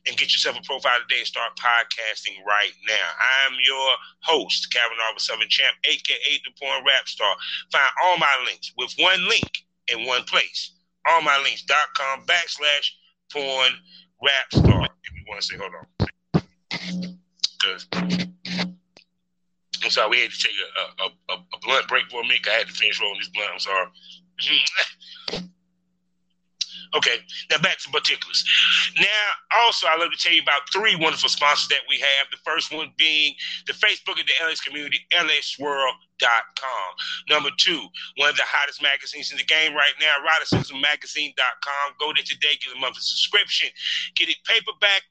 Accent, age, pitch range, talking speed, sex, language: American, 30-49, 140-180 Hz, 170 wpm, male, English